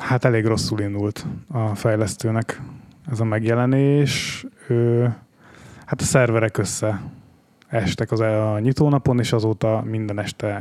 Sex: male